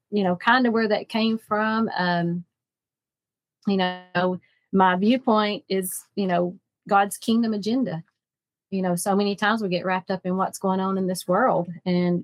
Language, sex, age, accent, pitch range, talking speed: English, female, 30-49, American, 170-195 Hz, 175 wpm